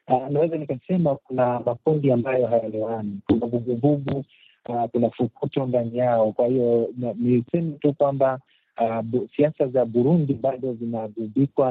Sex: male